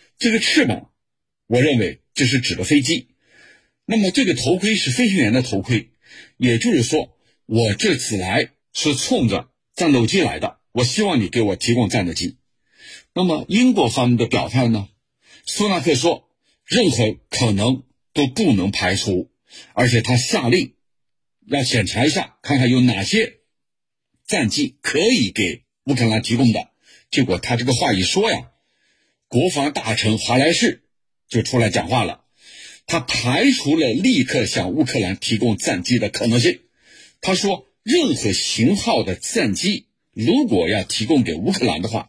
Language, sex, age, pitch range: Chinese, male, 50-69, 115-195 Hz